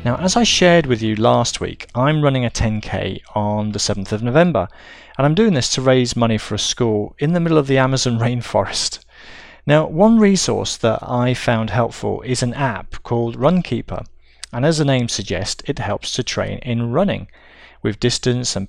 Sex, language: male, English